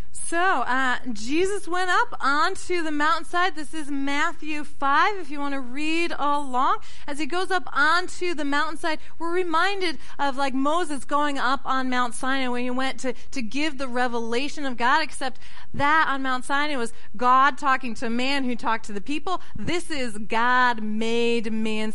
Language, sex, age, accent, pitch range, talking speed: English, female, 30-49, American, 220-290 Hz, 180 wpm